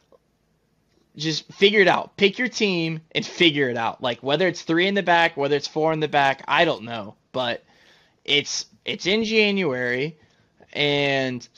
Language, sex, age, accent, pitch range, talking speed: English, male, 20-39, American, 130-170 Hz, 170 wpm